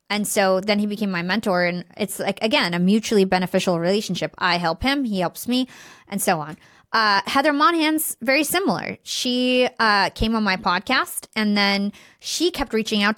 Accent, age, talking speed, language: American, 20-39, 185 wpm, English